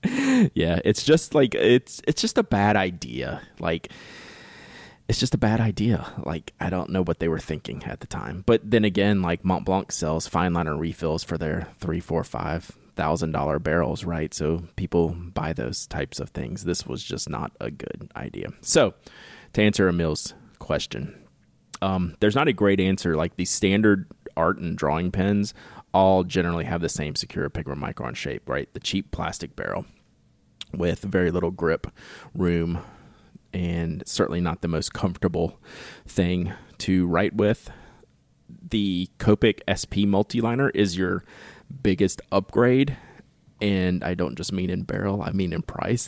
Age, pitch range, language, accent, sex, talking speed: 20-39, 85-105 Hz, English, American, male, 165 wpm